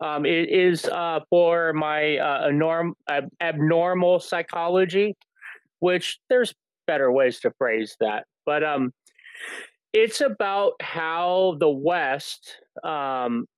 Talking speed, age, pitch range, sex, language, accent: 115 wpm, 30-49, 135-185 Hz, male, English, American